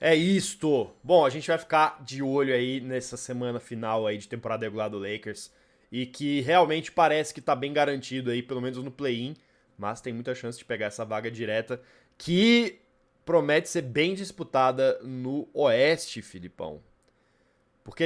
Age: 20-39